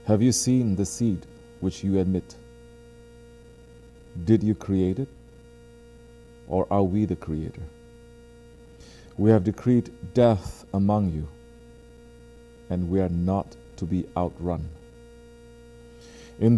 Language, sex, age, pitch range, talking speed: English, male, 50-69, 95-120 Hz, 110 wpm